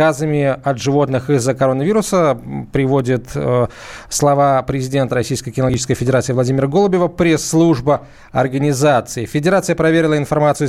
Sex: male